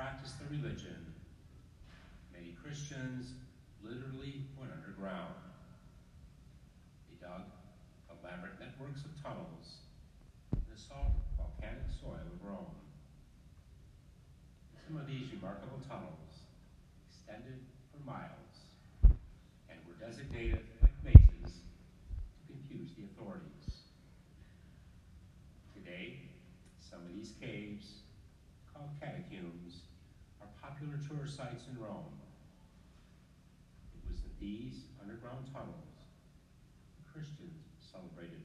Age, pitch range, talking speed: 50-69, 85-135 Hz, 90 wpm